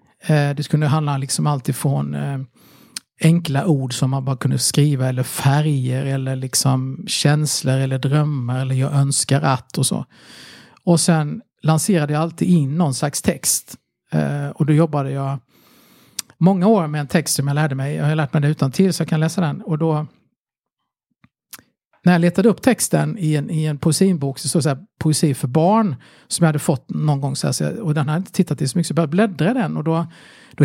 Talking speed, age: 200 wpm, 50-69